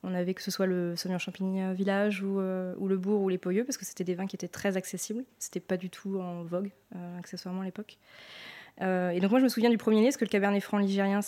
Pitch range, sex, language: 185-220 Hz, female, French